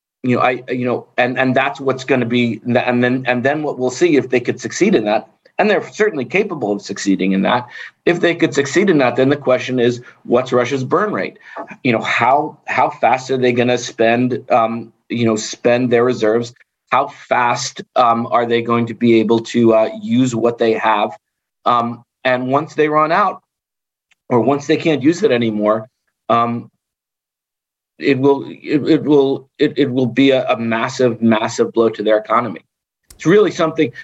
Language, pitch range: English, 115-135 Hz